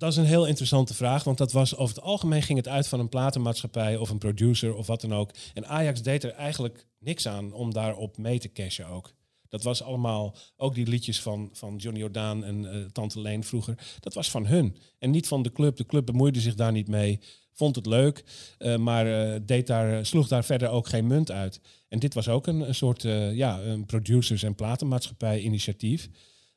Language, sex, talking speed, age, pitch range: Dutch, male, 210 wpm, 40-59, 110-130 Hz